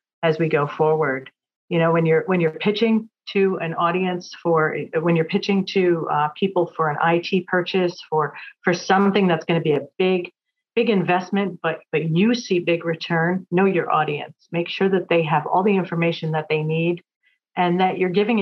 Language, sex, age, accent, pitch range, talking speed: English, female, 40-59, American, 160-185 Hz, 195 wpm